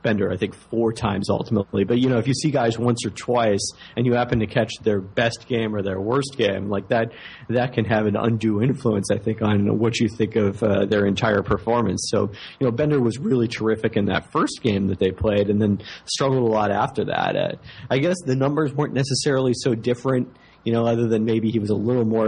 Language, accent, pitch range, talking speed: English, American, 105-125 Hz, 235 wpm